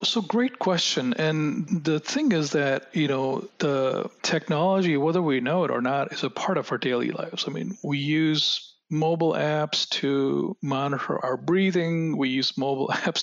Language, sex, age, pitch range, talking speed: English, male, 40-59, 135-165 Hz, 175 wpm